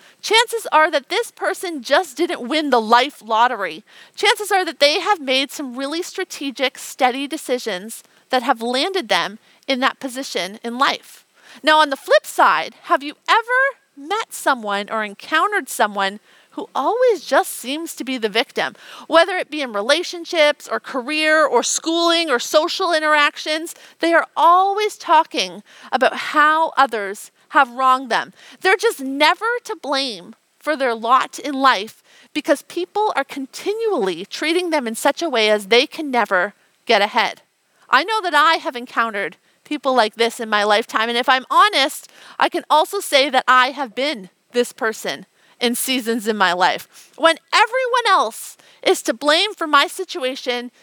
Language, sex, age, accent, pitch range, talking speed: English, female, 40-59, American, 245-335 Hz, 165 wpm